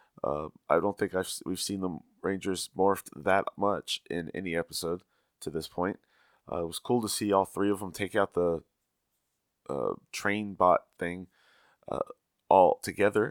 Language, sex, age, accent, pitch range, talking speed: English, male, 20-39, American, 85-105 Hz, 170 wpm